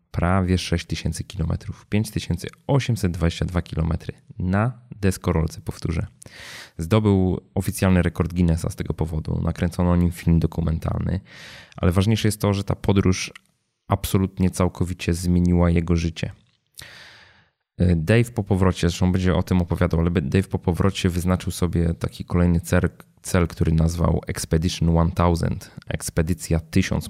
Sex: male